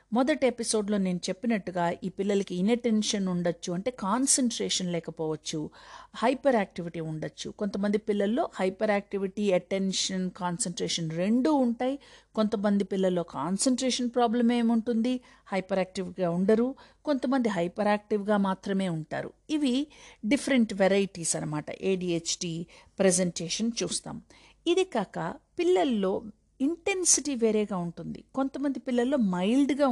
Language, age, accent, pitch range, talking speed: Telugu, 50-69, native, 185-255 Hz, 100 wpm